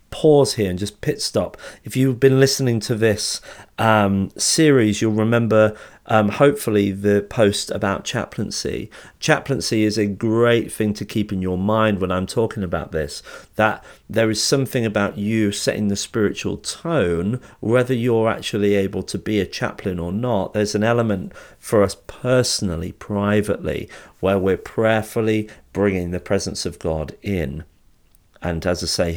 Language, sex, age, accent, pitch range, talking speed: English, male, 40-59, British, 95-125 Hz, 160 wpm